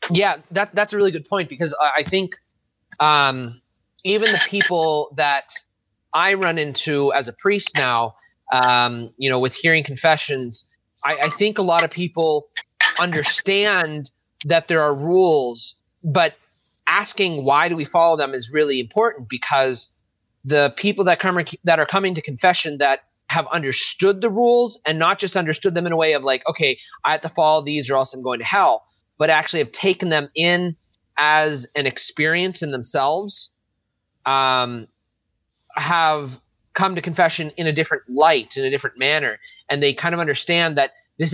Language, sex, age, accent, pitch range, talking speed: English, male, 30-49, American, 130-175 Hz, 170 wpm